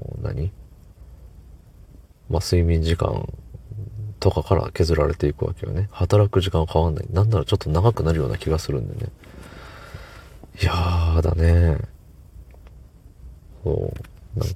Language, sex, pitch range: Japanese, male, 80-100 Hz